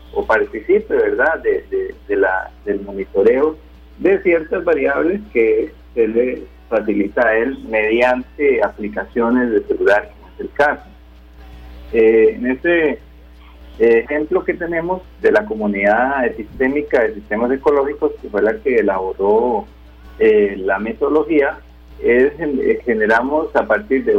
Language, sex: Spanish, male